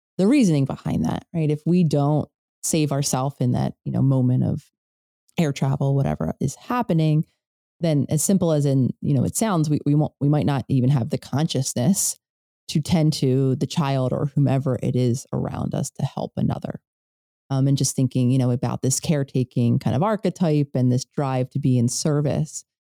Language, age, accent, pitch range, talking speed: English, 30-49, American, 135-170 Hz, 190 wpm